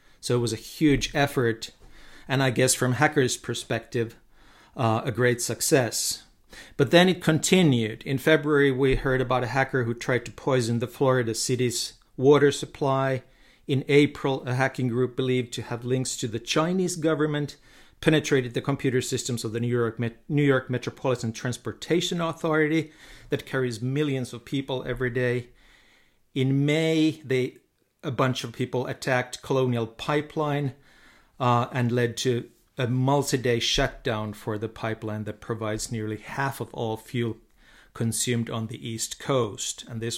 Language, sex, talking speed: Finnish, male, 150 wpm